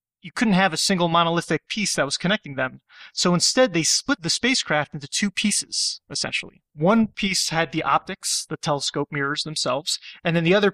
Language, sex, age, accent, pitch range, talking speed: English, male, 30-49, American, 145-185 Hz, 190 wpm